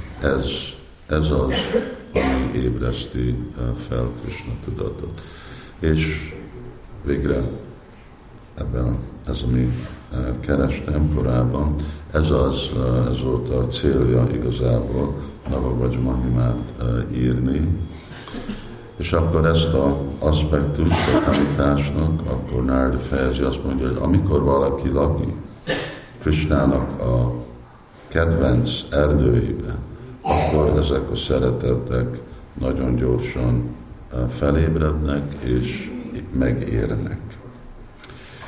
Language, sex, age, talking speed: Hungarian, male, 60-79, 85 wpm